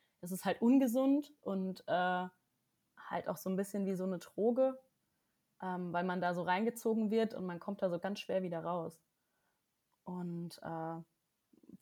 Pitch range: 175-200 Hz